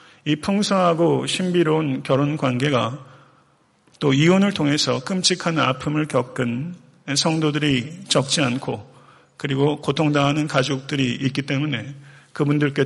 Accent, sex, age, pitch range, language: native, male, 40-59, 130-160 Hz, Korean